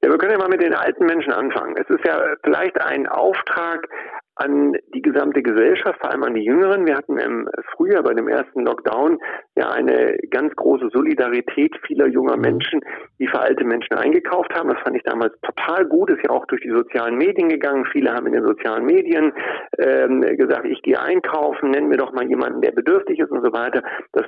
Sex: male